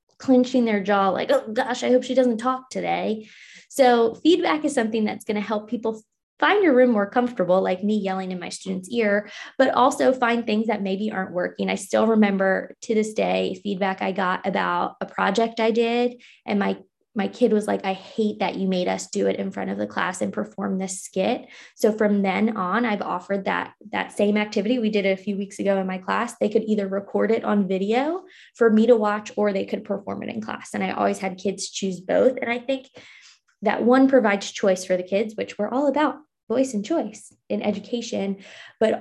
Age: 20-39